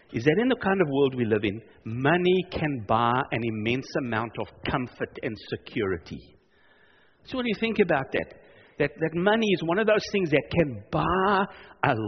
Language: English